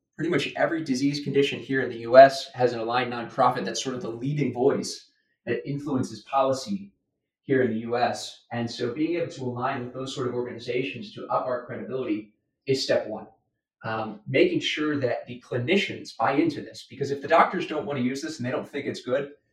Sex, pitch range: male, 120-150 Hz